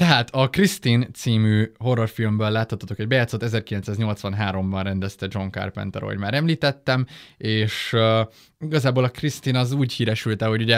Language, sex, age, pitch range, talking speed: Hungarian, male, 20-39, 100-135 Hz, 140 wpm